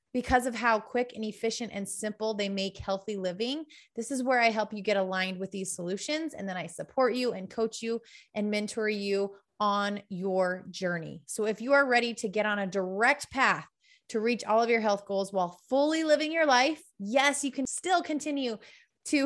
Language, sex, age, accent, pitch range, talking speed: English, female, 20-39, American, 200-250 Hz, 205 wpm